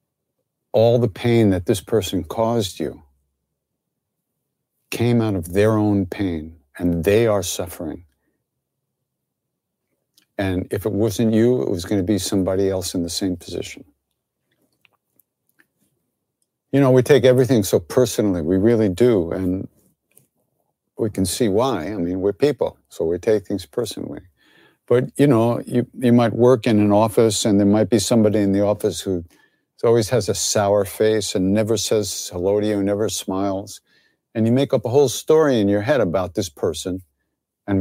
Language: English